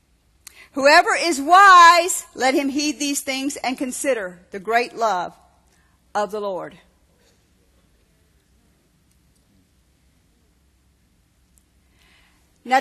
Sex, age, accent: female, 50-69, American